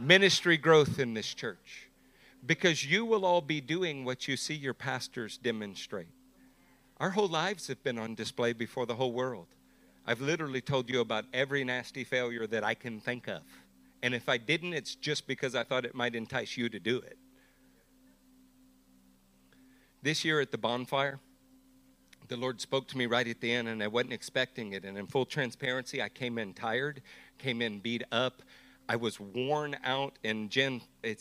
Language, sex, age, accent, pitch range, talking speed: English, male, 50-69, American, 110-145 Hz, 185 wpm